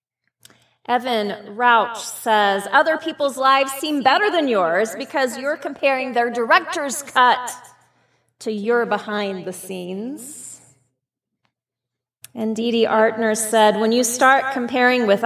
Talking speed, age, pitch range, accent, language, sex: 120 wpm, 30-49, 210-315 Hz, American, English, female